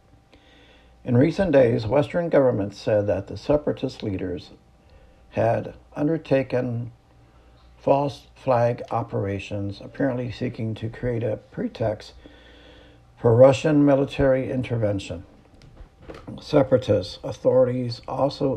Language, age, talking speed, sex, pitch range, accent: English, 60-79, 90 wpm, male, 85-135 Hz, American